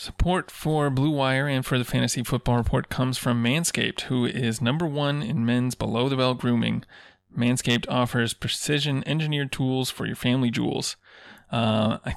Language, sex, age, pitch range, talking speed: English, male, 20-39, 120-135 Hz, 155 wpm